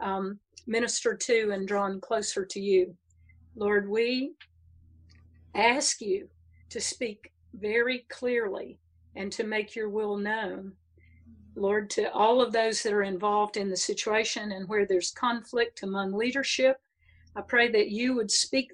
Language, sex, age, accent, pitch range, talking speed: English, female, 50-69, American, 190-235 Hz, 145 wpm